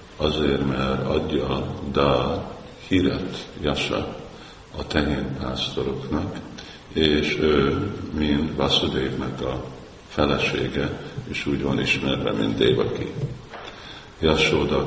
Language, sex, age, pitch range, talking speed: Hungarian, male, 50-69, 65-75 Hz, 85 wpm